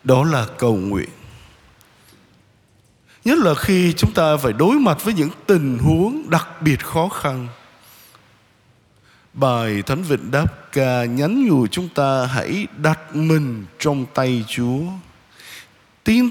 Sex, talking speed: male, 135 wpm